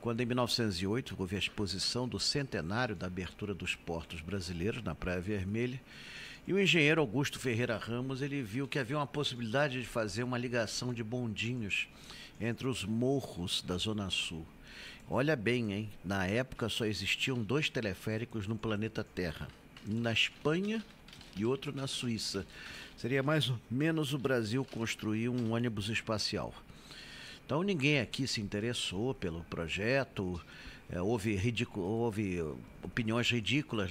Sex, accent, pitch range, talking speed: male, Brazilian, 105-130 Hz, 145 wpm